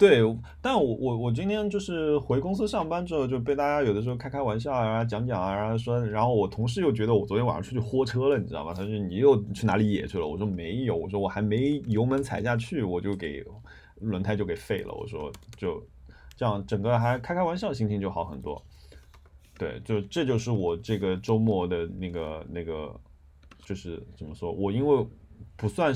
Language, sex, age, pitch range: Chinese, male, 20-39, 90-120 Hz